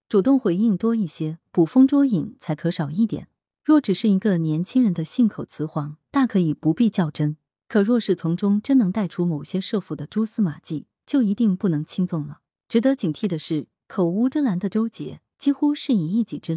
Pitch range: 165-230 Hz